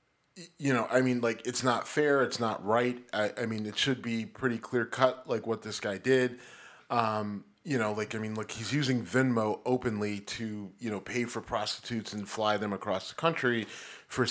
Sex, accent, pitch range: male, American, 110-130 Hz